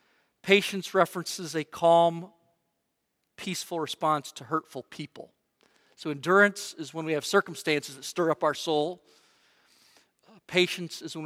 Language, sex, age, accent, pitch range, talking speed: English, male, 40-59, American, 145-175 Hz, 130 wpm